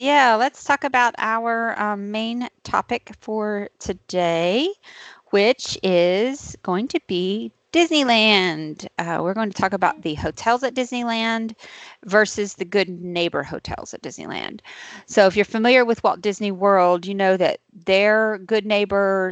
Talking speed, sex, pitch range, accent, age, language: 145 wpm, female, 175-230 Hz, American, 30-49, English